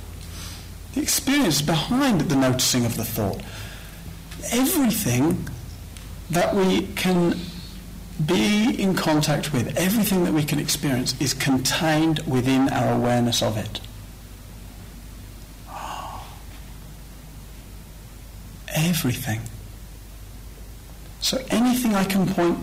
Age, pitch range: 40-59, 110-165 Hz